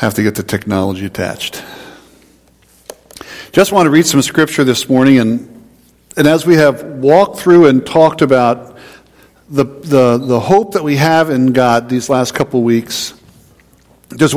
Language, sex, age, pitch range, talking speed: English, male, 50-69, 140-180 Hz, 160 wpm